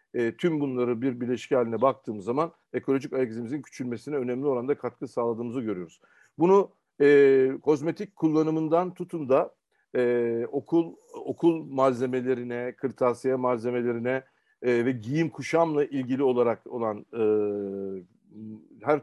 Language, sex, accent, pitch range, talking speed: Turkish, male, native, 125-160 Hz, 115 wpm